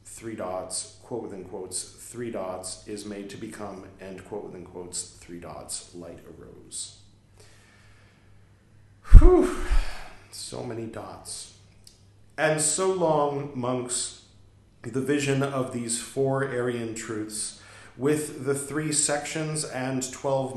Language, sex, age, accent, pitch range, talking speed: English, male, 40-59, American, 100-130 Hz, 110 wpm